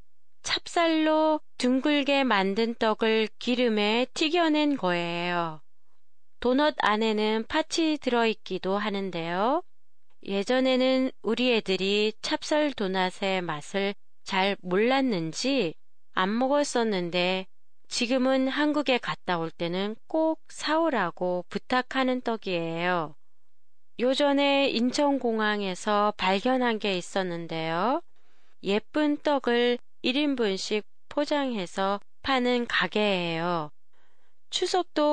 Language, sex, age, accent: Japanese, female, 20-39, Korean